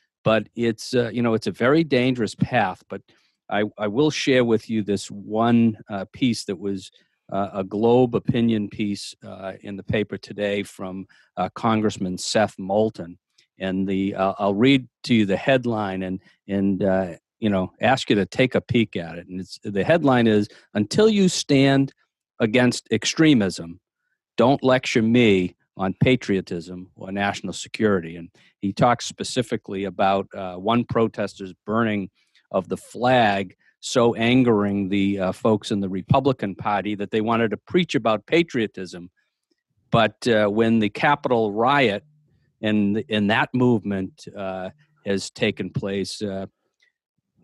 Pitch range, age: 95-120 Hz, 50-69